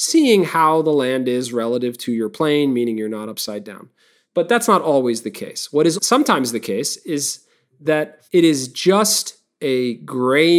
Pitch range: 130-185 Hz